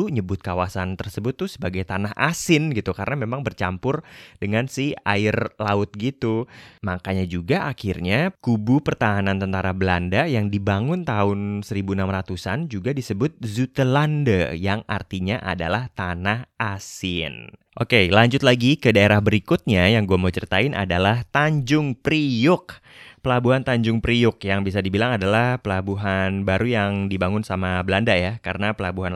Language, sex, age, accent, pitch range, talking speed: Indonesian, male, 20-39, native, 95-125 Hz, 130 wpm